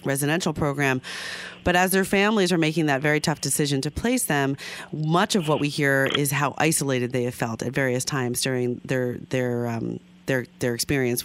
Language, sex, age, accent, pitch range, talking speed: English, female, 40-59, American, 130-165 Hz, 190 wpm